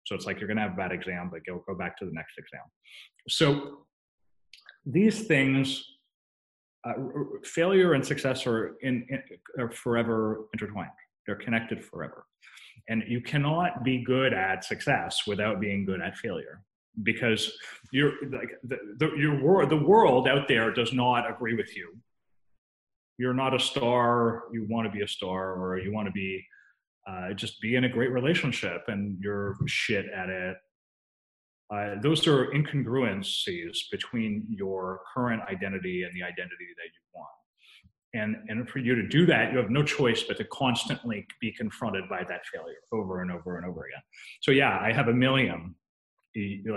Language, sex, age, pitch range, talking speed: Croatian, male, 30-49, 100-130 Hz, 175 wpm